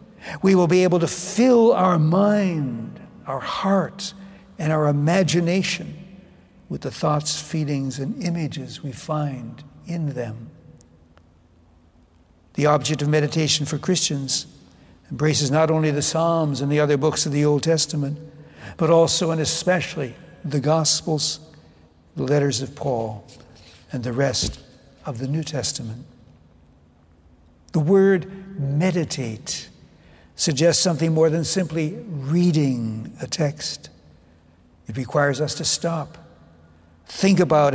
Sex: male